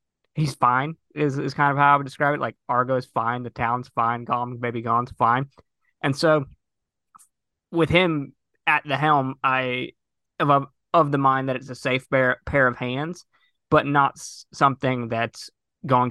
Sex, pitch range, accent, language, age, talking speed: male, 115-140 Hz, American, English, 20-39, 175 wpm